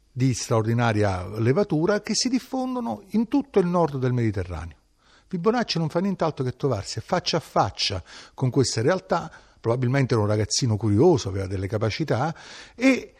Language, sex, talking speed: Italian, male, 150 wpm